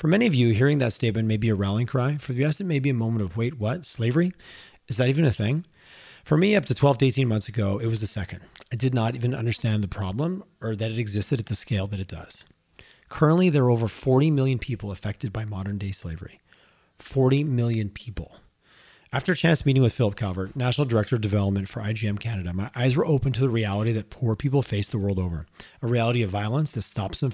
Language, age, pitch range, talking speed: English, 30-49, 105-135 Hz, 240 wpm